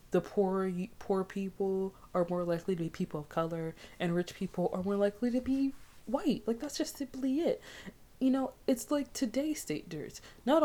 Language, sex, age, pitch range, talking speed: English, female, 20-39, 170-210 Hz, 185 wpm